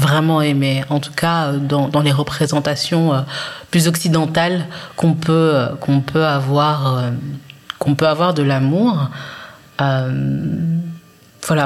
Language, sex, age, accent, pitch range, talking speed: French, female, 30-49, French, 130-160 Hz, 120 wpm